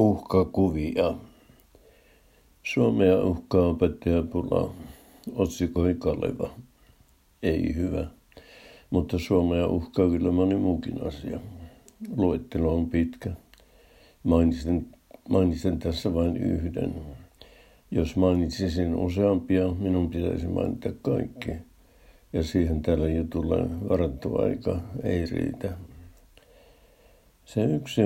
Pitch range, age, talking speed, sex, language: 85-95 Hz, 60-79, 85 wpm, male, Finnish